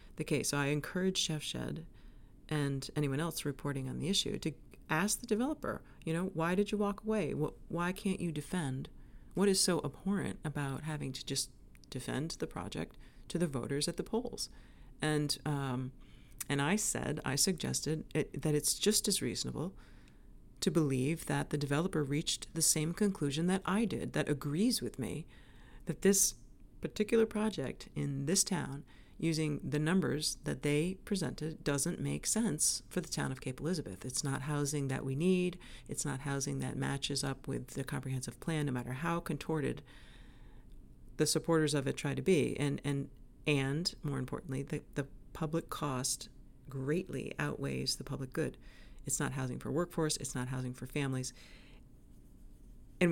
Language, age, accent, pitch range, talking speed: English, 40-59, American, 135-170 Hz, 165 wpm